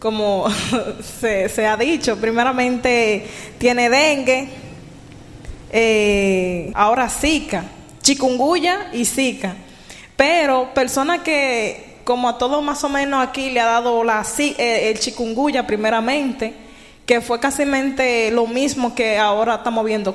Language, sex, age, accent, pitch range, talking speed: Spanish, female, 20-39, American, 225-260 Hz, 125 wpm